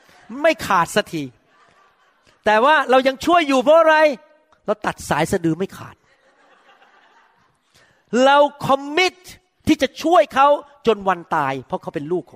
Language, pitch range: Thai, 170-275 Hz